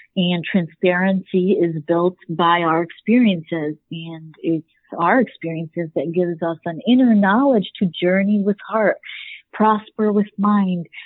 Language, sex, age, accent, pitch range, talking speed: English, female, 40-59, American, 175-215 Hz, 130 wpm